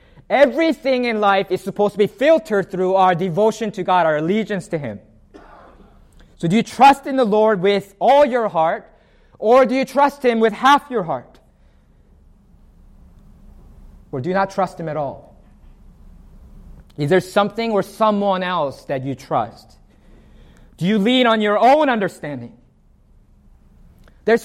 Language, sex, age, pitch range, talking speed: English, male, 30-49, 145-225 Hz, 150 wpm